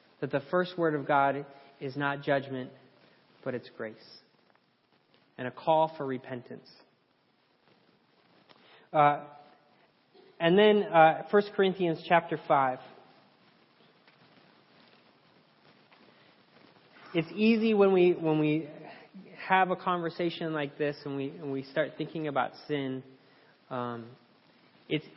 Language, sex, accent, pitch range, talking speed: English, male, American, 145-180 Hz, 110 wpm